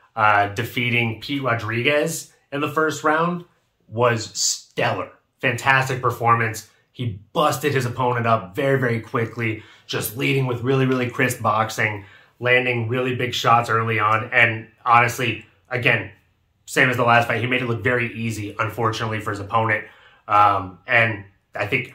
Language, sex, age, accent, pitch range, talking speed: English, male, 30-49, American, 110-130 Hz, 150 wpm